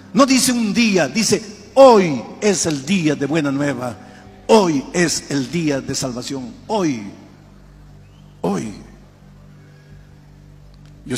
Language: Spanish